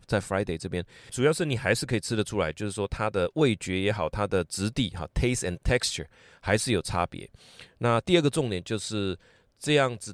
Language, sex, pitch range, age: Chinese, male, 100-130 Hz, 30-49